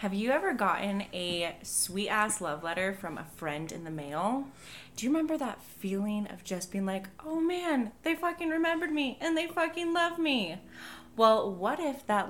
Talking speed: 185 wpm